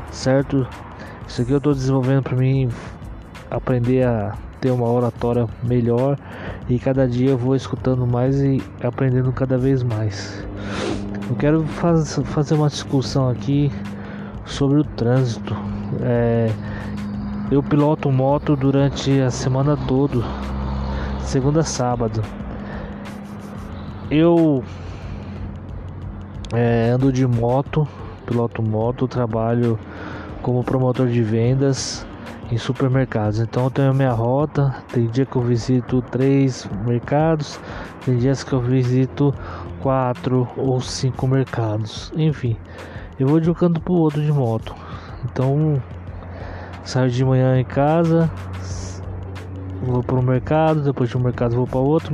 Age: 20-39